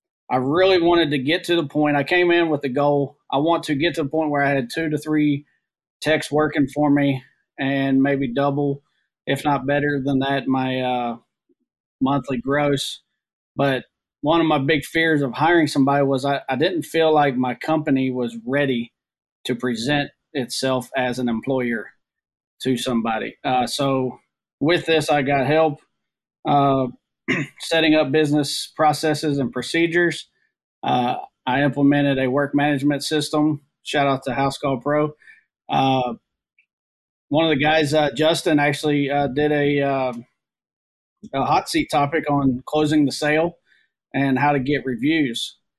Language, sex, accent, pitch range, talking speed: English, male, American, 135-155 Hz, 160 wpm